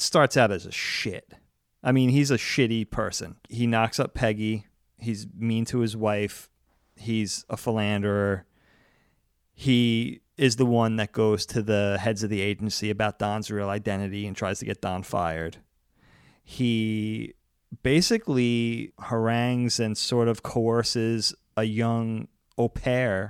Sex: male